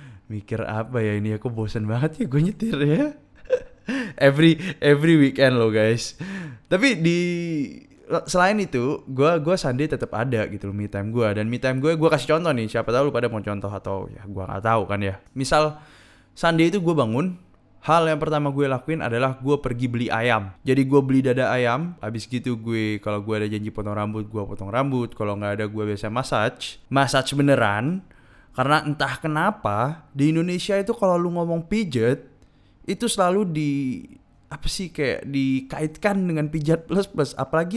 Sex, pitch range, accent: male, 120-185 Hz, native